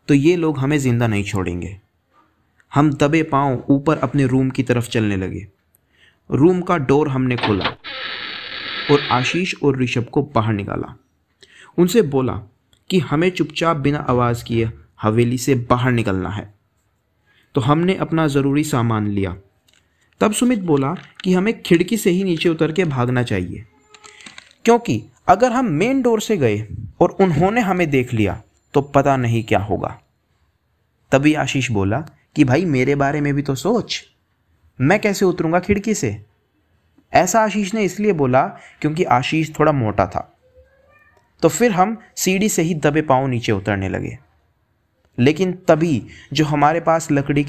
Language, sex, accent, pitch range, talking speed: Hindi, male, native, 110-170 Hz, 155 wpm